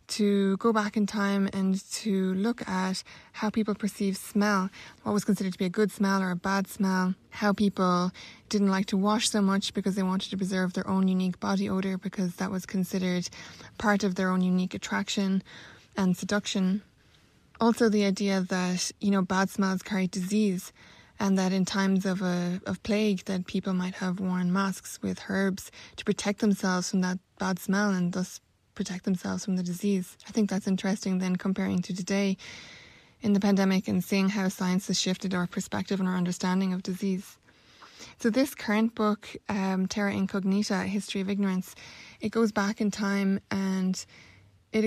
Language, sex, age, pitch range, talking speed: English, female, 20-39, 185-205 Hz, 180 wpm